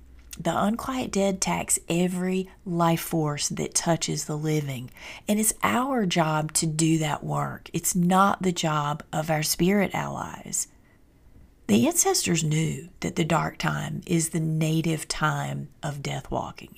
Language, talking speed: English, 145 wpm